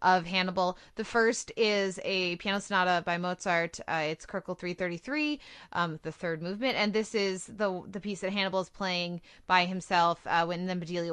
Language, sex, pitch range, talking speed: English, female, 170-200 Hz, 185 wpm